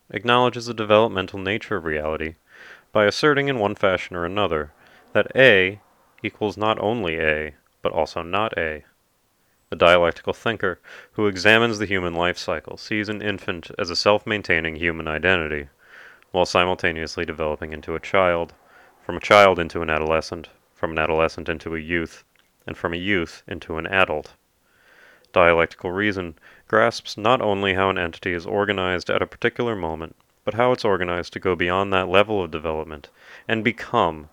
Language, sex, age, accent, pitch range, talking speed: English, male, 30-49, American, 80-105 Hz, 160 wpm